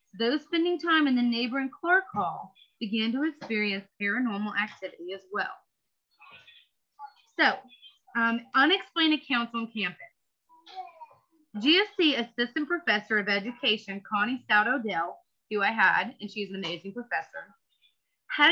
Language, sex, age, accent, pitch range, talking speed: English, female, 30-49, American, 210-320 Hz, 125 wpm